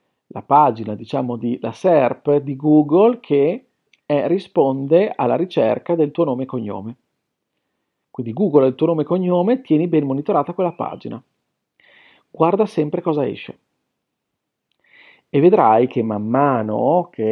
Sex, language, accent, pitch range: male, Italian, native, 130-180 Hz